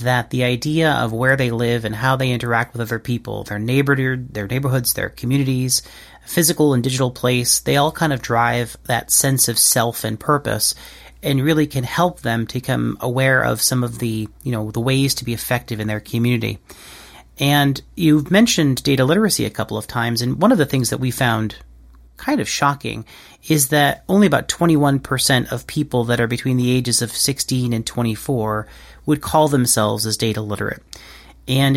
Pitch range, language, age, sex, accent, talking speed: 115-140 Hz, English, 30-49, male, American, 190 wpm